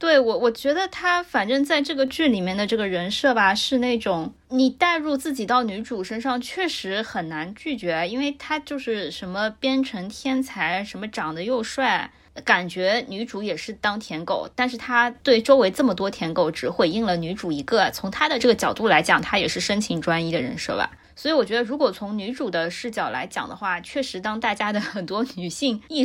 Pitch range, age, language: 180-245 Hz, 20-39, Chinese